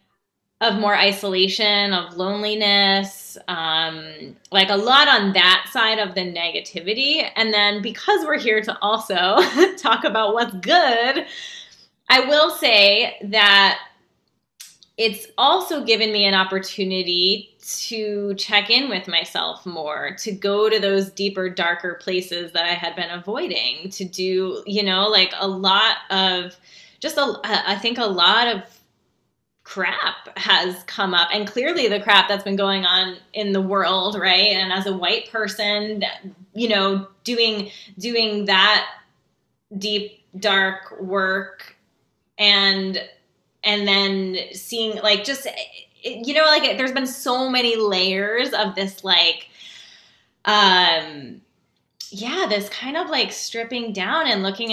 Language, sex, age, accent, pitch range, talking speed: English, female, 20-39, American, 190-220 Hz, 135 wpm